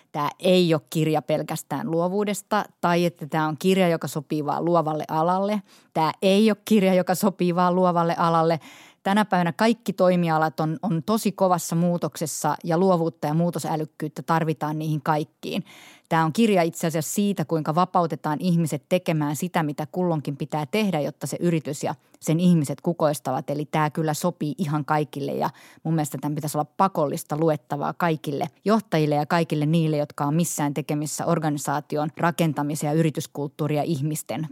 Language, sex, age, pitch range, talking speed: Finnish, female, 30-49, 155-180 Hz, 155 wpm